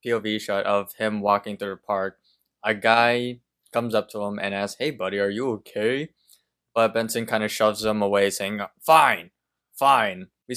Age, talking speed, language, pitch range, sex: 20-39, 180 wpm, English, 100-115 Hz, male